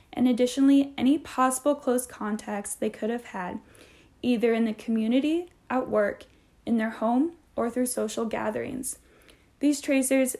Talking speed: 145 wpm